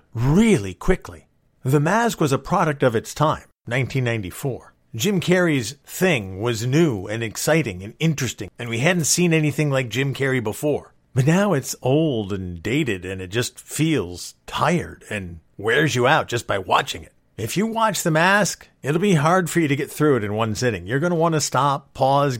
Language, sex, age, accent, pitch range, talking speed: English, male, 50-69, American, 115-150 Hz, 195 wpm